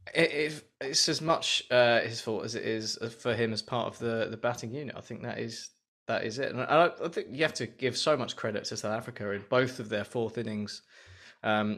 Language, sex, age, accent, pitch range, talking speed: English, male, 20-39, British, 100-125 Hz, 240 wpm